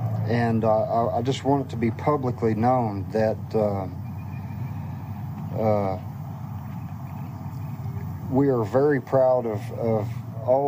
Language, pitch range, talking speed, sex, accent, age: English, 110-130 Hz, 110 wpm, male, American, 50-69